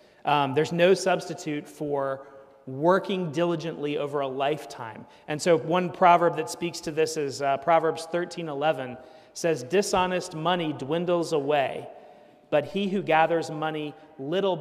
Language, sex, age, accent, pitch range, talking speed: English, male, 40-59, American, 150-185 Hz, 140 wpm